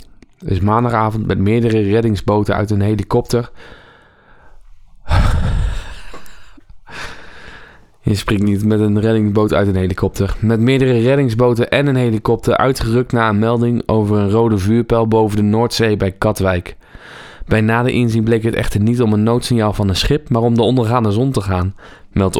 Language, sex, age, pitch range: Dutch, male, 20-39, 100-115 Hz